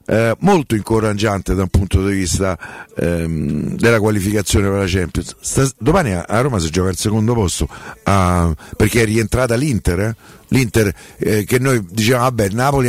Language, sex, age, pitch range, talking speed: Italian, male, 50-69, 100-130 Hz, 170 wpm